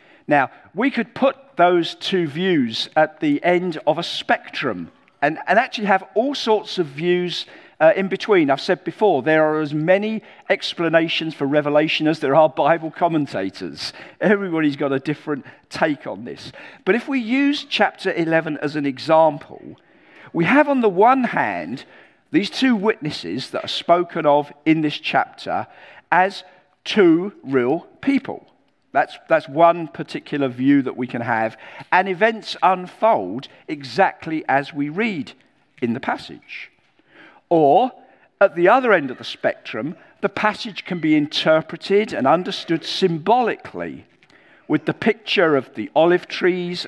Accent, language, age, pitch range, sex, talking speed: British, English, 50-69, 155-210 Hz, male, 150 wpm